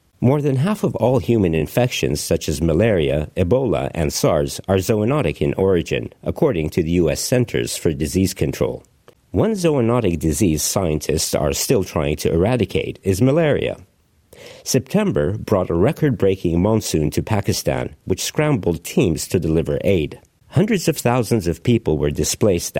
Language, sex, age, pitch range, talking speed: English, male, 50-69, 80-120 Hz, 145 wpm